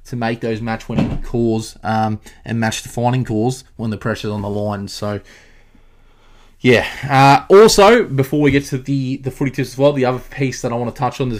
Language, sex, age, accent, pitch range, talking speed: English, male, 20-39, Australian, 110-130 Hz, 205 wpm